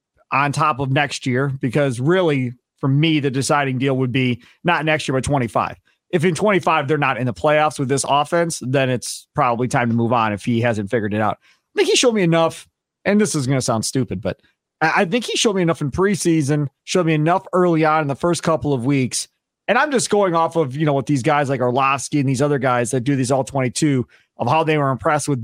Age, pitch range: 40-59, 130-165 Hz